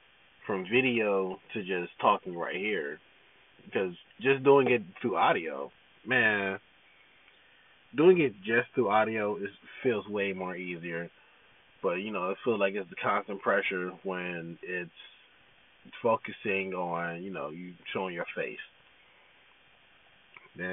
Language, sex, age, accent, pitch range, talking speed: English, male, 20-39, American, 95-135 Hz, 125 wpm